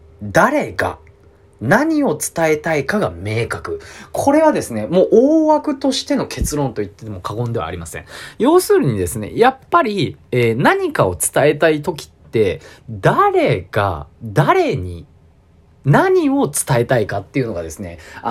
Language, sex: Japanese, male